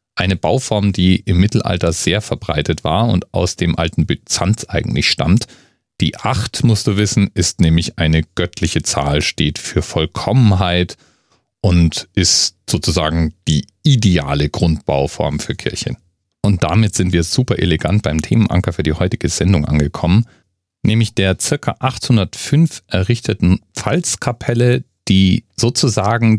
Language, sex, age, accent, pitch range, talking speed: German, male, 40-59, German, 85-110 Hz, 130 wpm